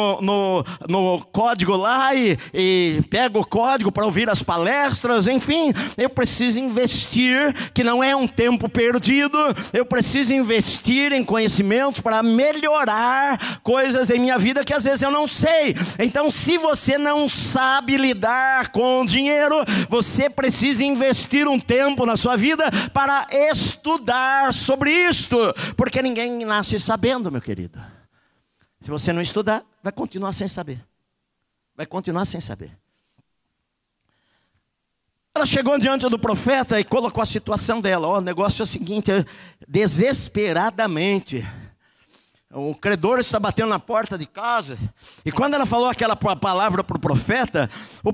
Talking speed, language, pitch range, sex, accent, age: 140 wpm, Portuguese, 195-260 Hz, male, Brazilian, 50-69